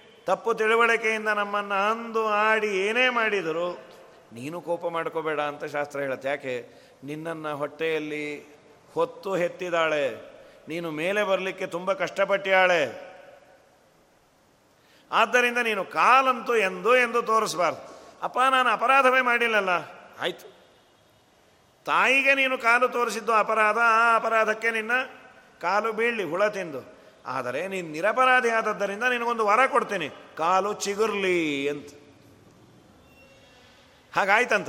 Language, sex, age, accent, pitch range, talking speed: Kannada, male, 40-59, native, 185-225 Hz, 100 wpm